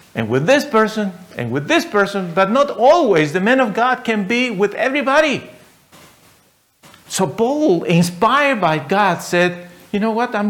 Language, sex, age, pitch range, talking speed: English, male, 50-69, 135-225 Hz, 165 wpm